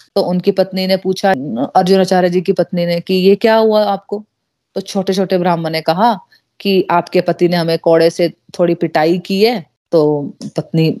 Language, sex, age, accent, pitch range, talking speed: Hindi, female, 30-49, native, 175-205 Hz, 190 wpm